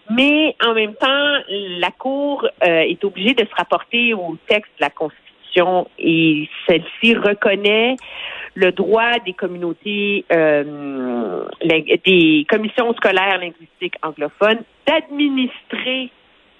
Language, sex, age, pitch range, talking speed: French, female, 50-69, 170-240 Hz, 110 wpm